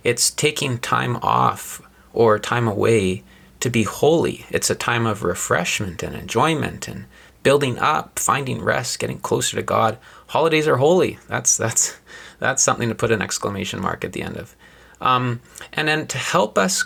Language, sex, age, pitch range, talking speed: English, male, 30-49, 105-125 Hz, 170 wpm